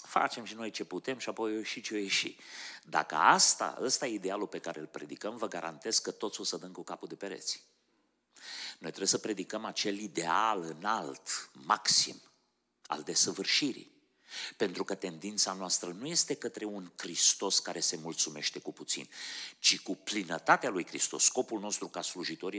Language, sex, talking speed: Romanian, male, 170 wpm